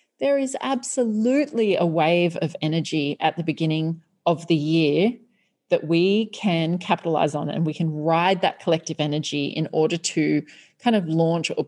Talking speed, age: 165 wpm, 30-49